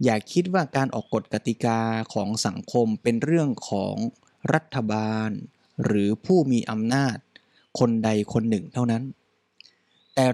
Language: Thai